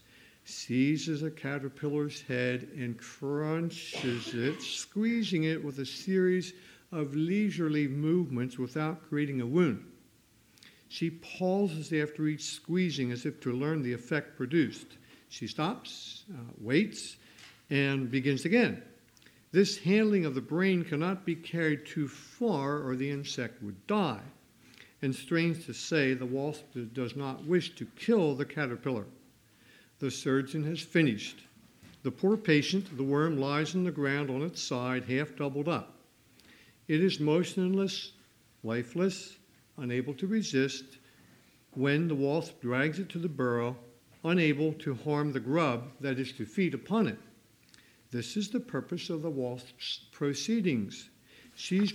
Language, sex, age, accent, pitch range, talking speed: English, male, 60-79, American, 130-170 Hz, 140 wpm